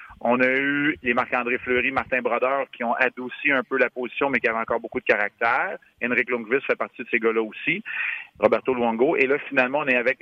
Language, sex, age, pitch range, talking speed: French, male, 30-49, 110-130 Hz, 225 wpm